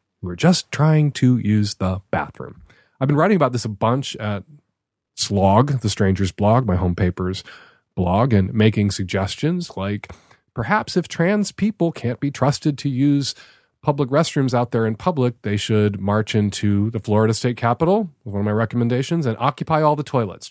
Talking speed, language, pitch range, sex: 175 wpm, English, 100-140 Hz, male